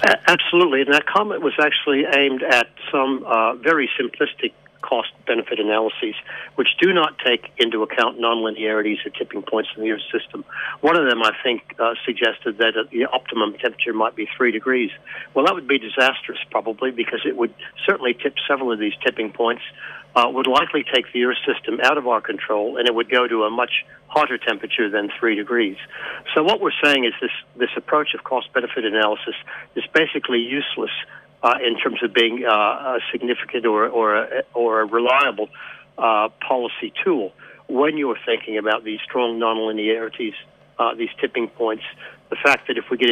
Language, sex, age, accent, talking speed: English, male, 60-79, American, 185 wpm